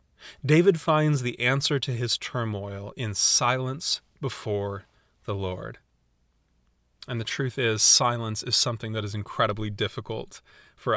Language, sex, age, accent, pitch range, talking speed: English, male, 30-49, American, 110-135 Hz, 130 wpm